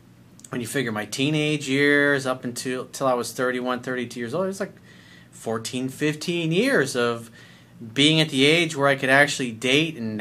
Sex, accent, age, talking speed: male, American, 30-49, 180 wpm